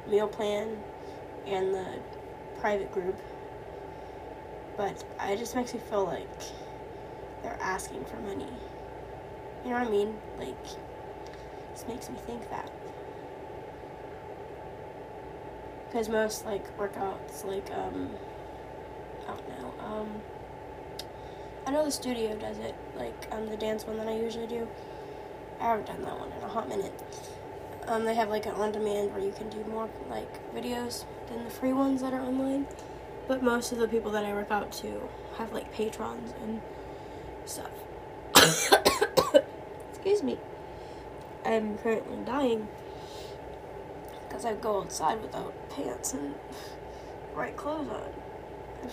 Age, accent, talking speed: 10-29, American, 140 wpm